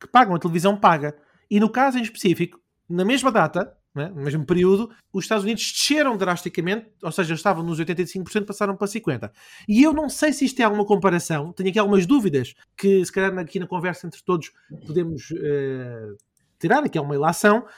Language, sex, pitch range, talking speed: Portuguese, male, 175-225 Hz, 200 wpm